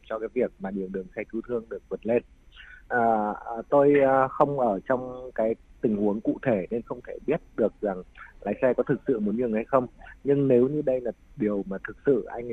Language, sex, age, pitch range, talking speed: Vietnamese, male, 20-39, 105-135 Hz, 230 wpm